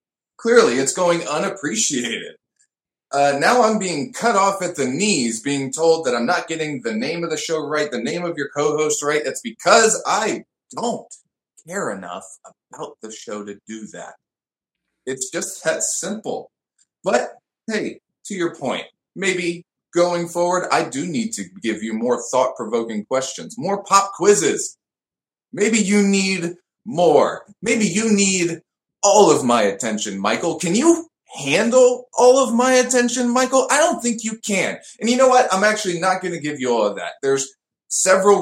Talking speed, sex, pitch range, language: 170 wpm, male, 155-225 Hz, English